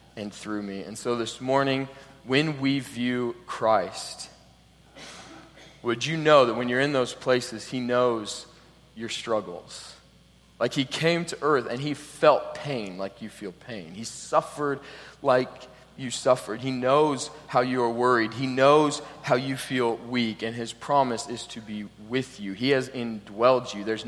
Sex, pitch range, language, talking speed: male, 115-135 Hz, English, 165 wpm